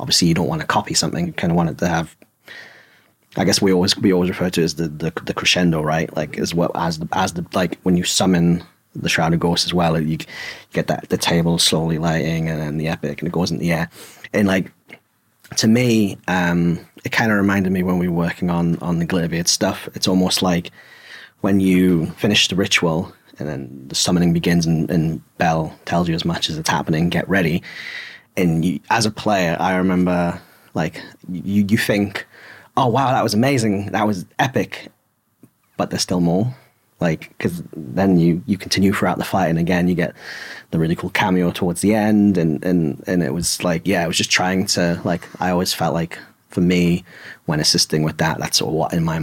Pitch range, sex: 85-95 Hz, male